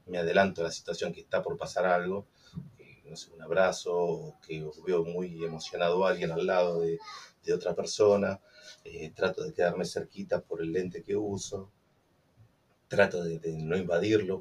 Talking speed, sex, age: 180 wpm, male, 30-49